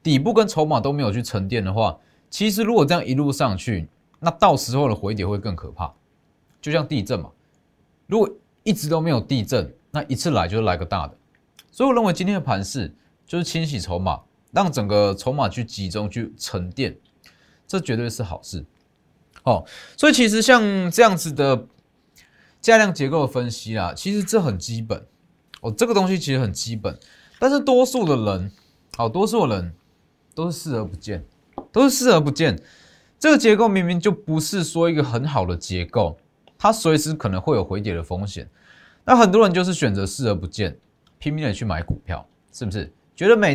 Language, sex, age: Chinese, male, 20-39